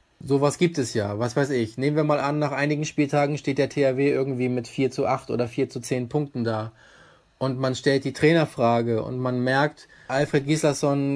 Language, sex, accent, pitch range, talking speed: German, male, German, 130-155 Hz, 205 wpm